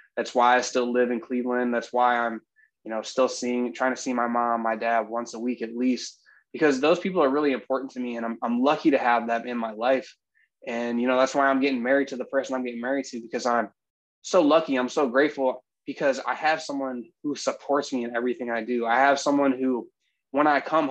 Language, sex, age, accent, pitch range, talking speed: English, male, 20-39, American, 120-145 Hz, 240 wpm